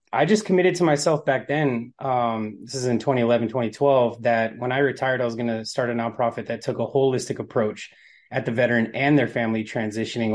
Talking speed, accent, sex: 210 wpm, American, male